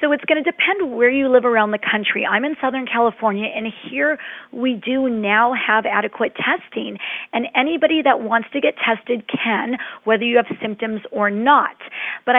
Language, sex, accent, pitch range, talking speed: English, female, American, 220-265 Hz, 185 wpm